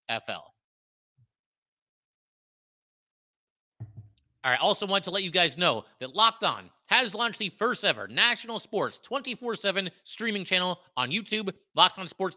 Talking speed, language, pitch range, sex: 140 wpm, English, 145-195 Hz, male